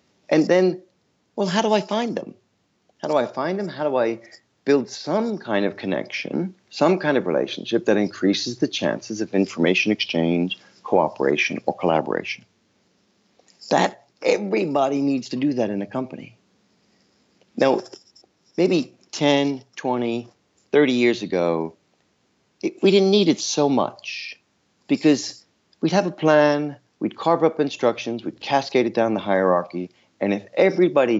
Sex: male